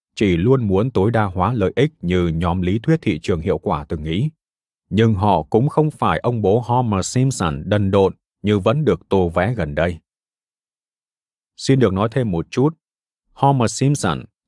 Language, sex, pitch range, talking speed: Vietnamese, male, 90-130 Hz, 180 wpm